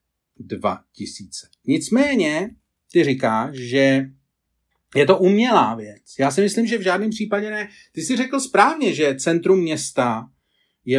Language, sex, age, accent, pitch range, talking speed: Czech, male, 40-59, native, 145-180 Hz, 135 wpm